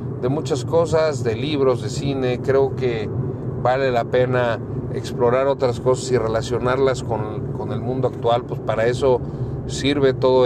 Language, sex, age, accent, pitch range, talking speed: Spanish, male, 40-59, Mexican, 115-130 Hz, 155 wpm